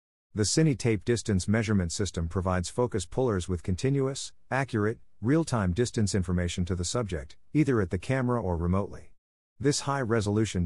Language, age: English, 50-69